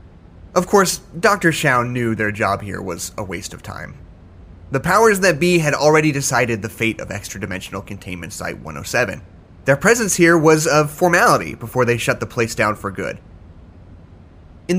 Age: 30-49